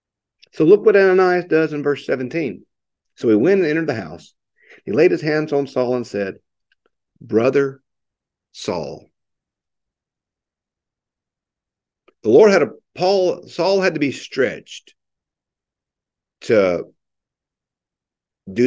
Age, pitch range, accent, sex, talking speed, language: 50-69, 140-195 Hz, American, male, 120 wpm, English